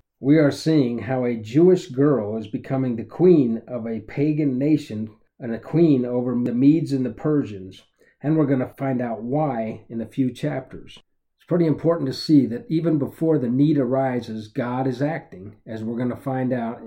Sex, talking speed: male, 195 wpm